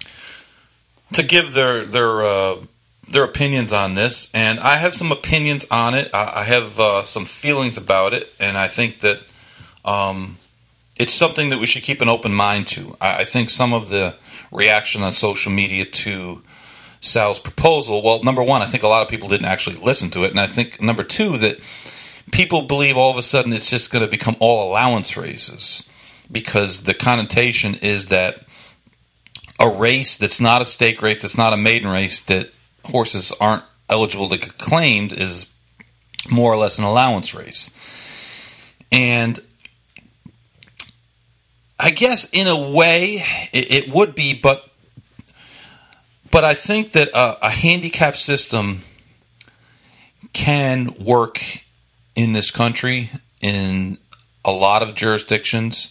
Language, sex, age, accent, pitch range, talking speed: English, male, 40-59, American, 105-130 Hz, 160 wpm